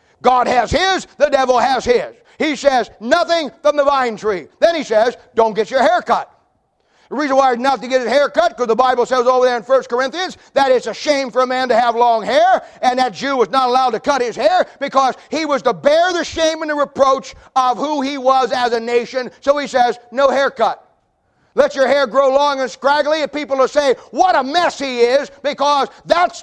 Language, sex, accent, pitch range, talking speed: English, male, American, 240-295 Hz, 230 wpm